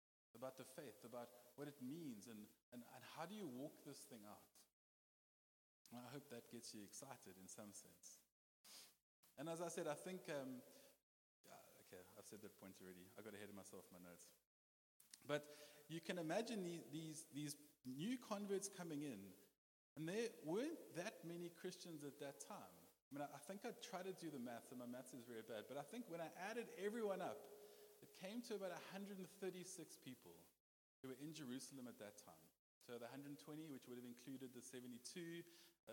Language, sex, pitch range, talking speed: English, male, 120-165 Hz, 190 wpm